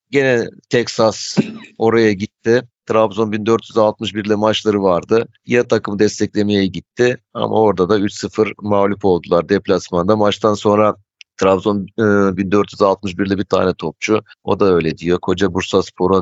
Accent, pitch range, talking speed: native, 95-110 Hz, 120 wpm